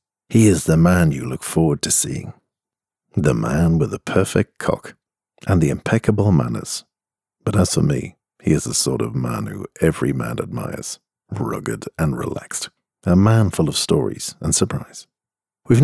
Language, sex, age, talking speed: English, male, 50-69, 165 wpm